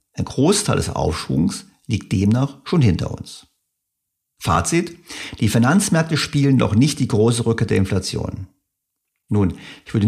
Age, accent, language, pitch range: 50-69, German, German, 100-140 Hz